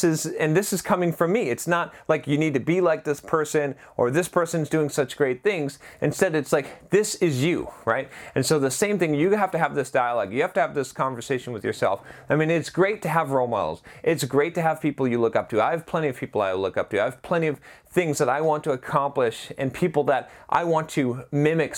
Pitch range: 135-170 Hz